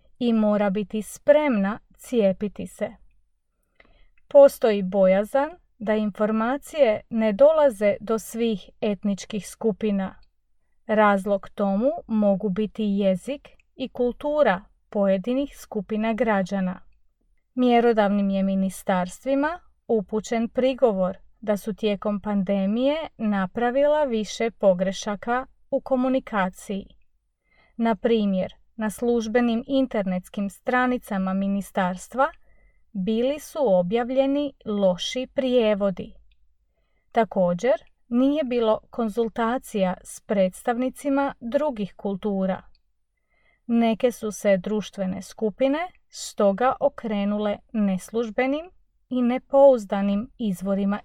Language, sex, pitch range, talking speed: Croatian, female, 200-255 Hz, 85 wpm